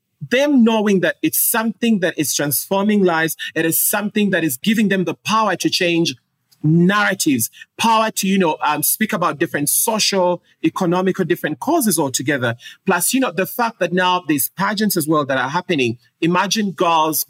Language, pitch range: English, 155-200 Hz